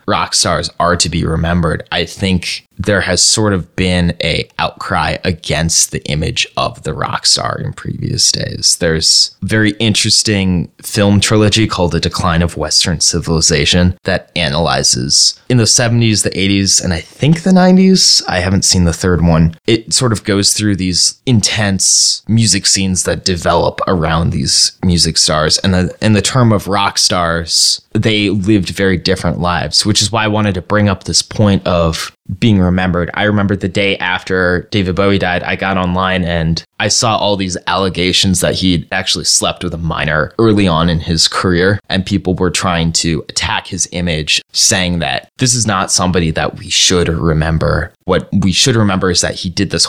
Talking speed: 180 wpm